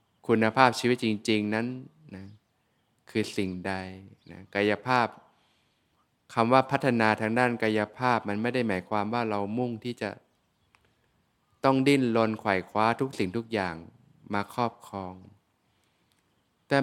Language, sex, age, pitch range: Thai, male, 20-39, 100-120 Hz